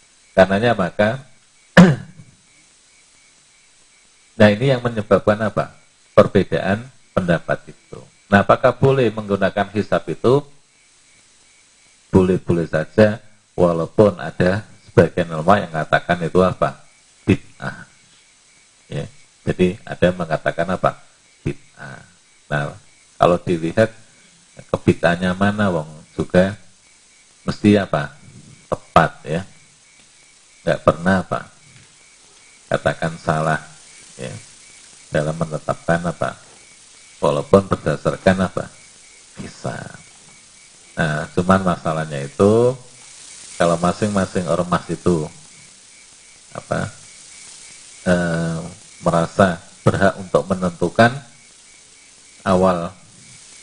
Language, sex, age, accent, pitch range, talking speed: Indonesian, male, 40-59, native, 85-110 Hz, 85 wpm